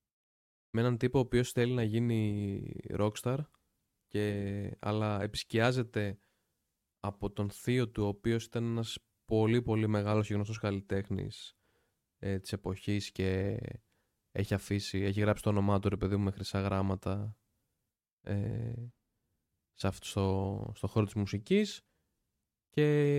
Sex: male